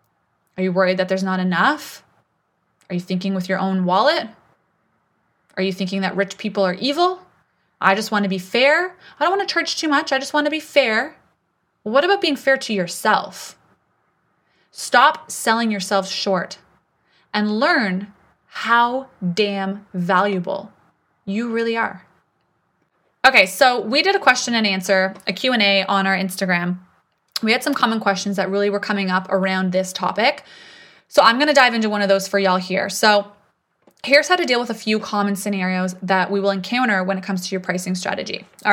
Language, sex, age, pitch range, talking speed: English, female, 20-39, 190-235 Hz, 185 wpm